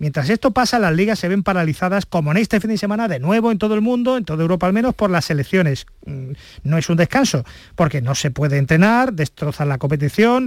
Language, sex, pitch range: Spanish, male, 165-225 Hz